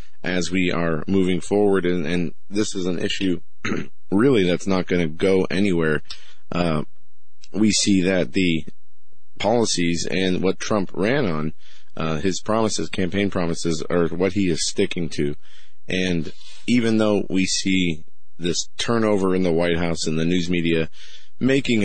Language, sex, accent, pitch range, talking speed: English, male, American, 85-95 Hz, 155 wpm